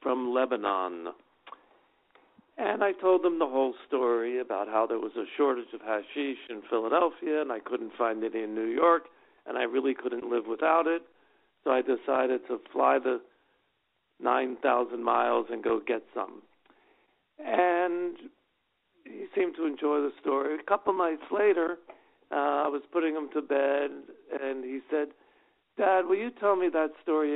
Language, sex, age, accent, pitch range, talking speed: English, male, 50-69, American, 130-175 Hz, 160 wpm